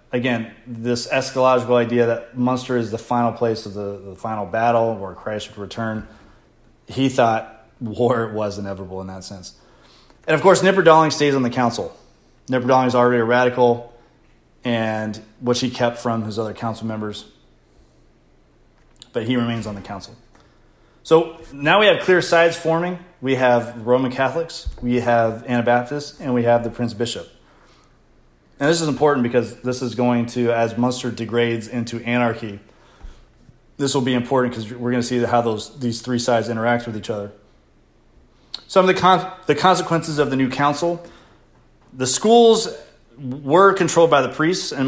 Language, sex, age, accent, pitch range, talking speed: English, male, 30-49, American, 115-135 Hz, 165 wpm